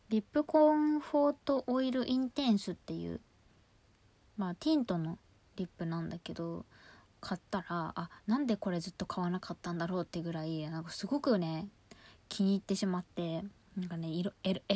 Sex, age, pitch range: female, 20-39, 170-215 Hz